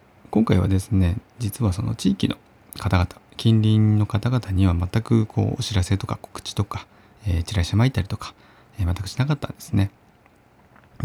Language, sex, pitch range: Japanese, male, 95-110 Hz